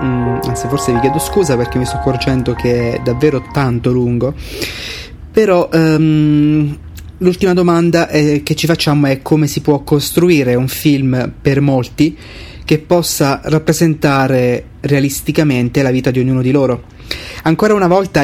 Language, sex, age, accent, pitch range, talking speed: Italian, male, 30-49, native, 130-160 Hz, 145 wpm